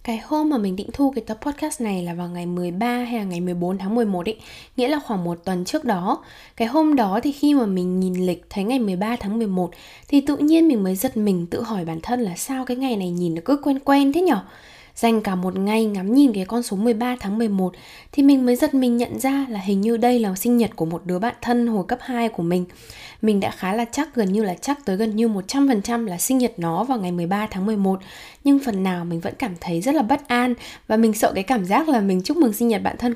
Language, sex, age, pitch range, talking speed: Vietnamese, female, 10-29, 190-255 Hz, 270 wpm